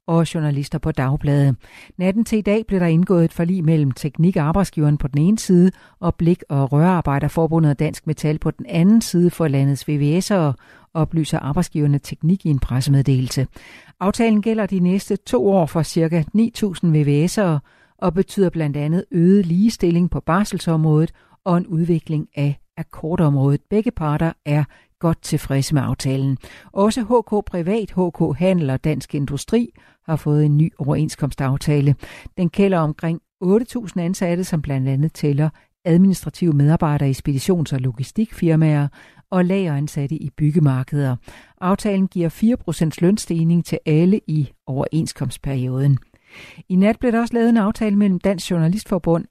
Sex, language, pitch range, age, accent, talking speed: female, Danish, 145-185 Hz, 60-79, native, 145 wpm